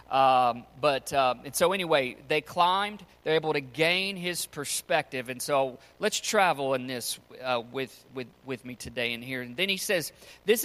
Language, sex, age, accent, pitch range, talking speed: English, male, 40-59, American, 125-165 Hz, 185 wpm